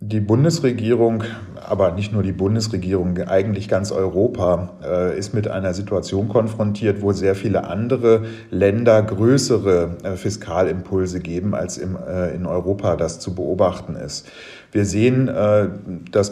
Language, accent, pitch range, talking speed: German, German, 95-110 Hz, 120 wpm